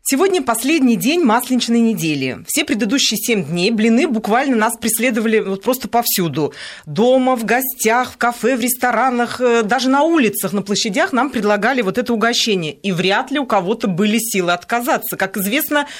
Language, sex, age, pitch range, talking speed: Russian, female, 40-59, 195-255 Hz, 160 wpm